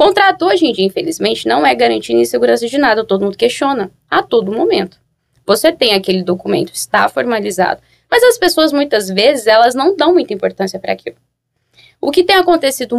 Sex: female